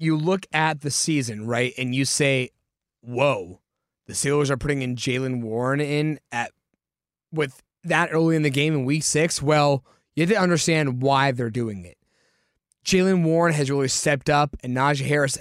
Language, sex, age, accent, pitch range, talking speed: English, male, 20-39, American, 135-170 Hz, 180 wpm